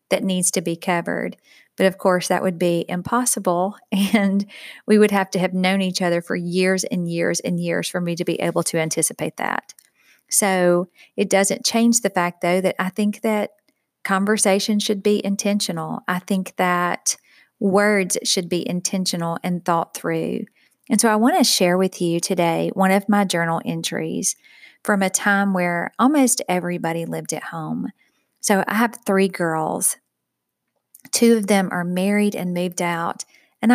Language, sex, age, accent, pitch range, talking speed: English, female, 40-59, American, 175-210 Hz, 170 wpm